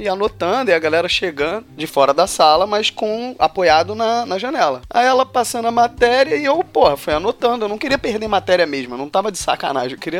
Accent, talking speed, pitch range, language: Brazilian, 230 wpm, 155-245 Hz, Portuguese